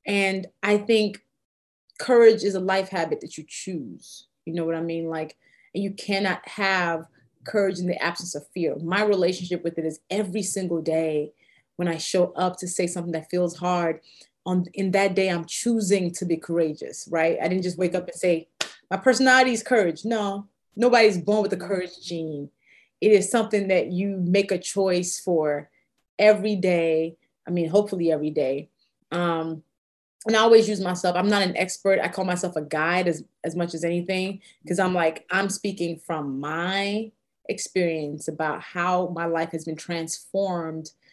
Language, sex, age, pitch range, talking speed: English, female, 30-49, 165-200 Hz, 180 wpm